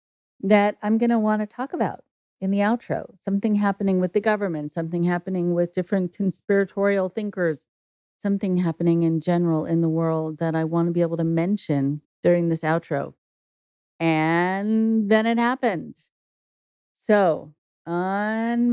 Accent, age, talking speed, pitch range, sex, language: American, 40-59, 145 wpm, 170-215 Hz, female, English